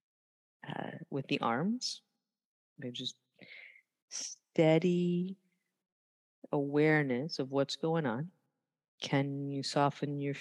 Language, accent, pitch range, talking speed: English, American, 130-175 Hz, 90 wpm